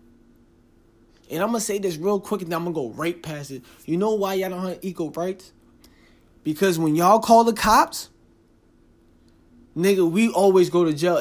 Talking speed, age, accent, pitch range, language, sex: 185 wpm, 20-39, American, 125-200 Hz, English, male